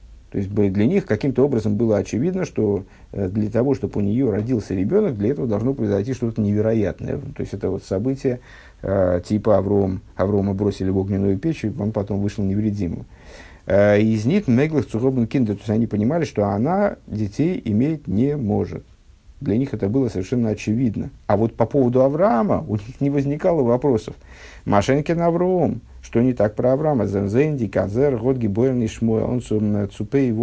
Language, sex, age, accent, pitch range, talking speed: Russian, male, 50-69, native, 95-120 Hz, 160 wpm